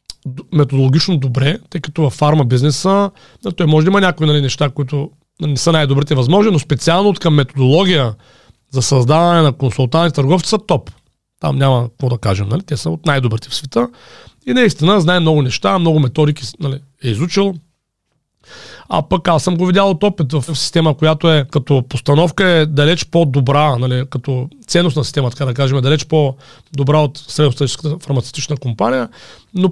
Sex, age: male, 40-59